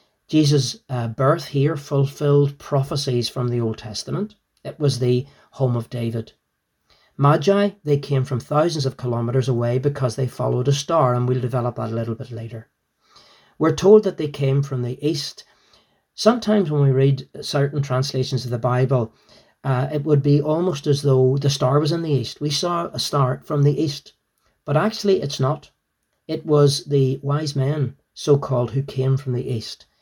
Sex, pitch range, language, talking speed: male, 125-150 Hz, English, 175 wpm